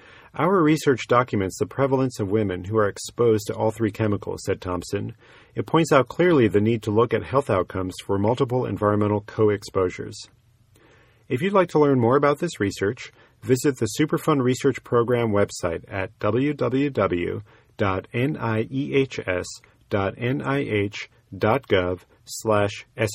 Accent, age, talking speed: American, 40-59, 125 wpm